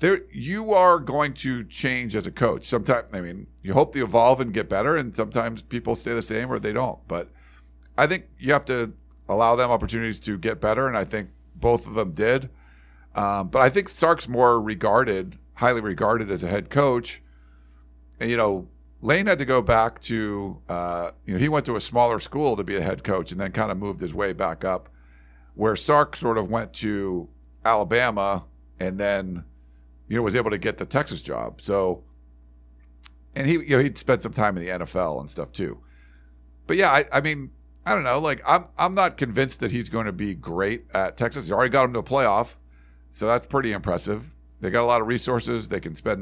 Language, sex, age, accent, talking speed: English, male, 50-69, American, 215 wpm